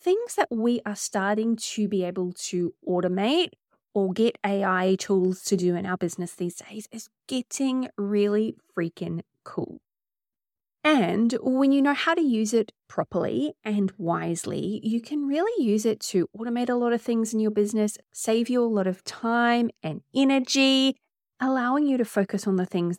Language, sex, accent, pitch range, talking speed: English, female, Australian, 185-240 Hz, 170 wpm